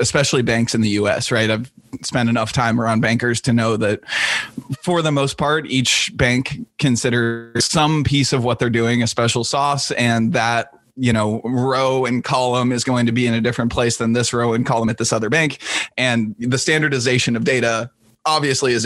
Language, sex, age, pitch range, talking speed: English, male, 20-39, 115-140 Hz, 195 wpm